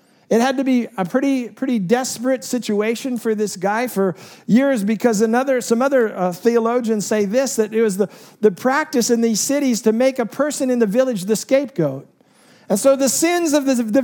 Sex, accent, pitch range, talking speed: male, American, 210-260 Hz, 200 wpm